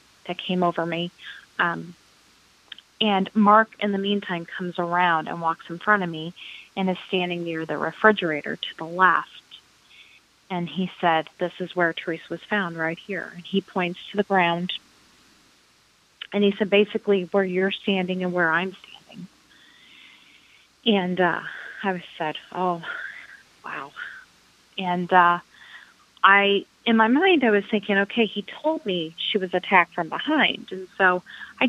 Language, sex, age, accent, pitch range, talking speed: English, female, 30-49, American, 180-210 Hz, 155 wpm